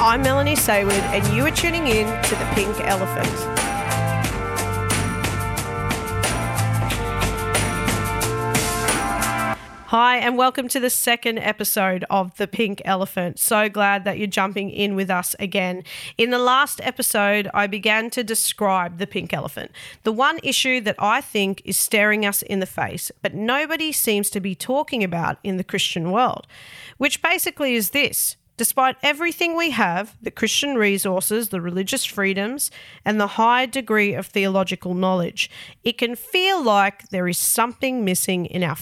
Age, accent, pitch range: 30-49, Australian, 185-245 Hz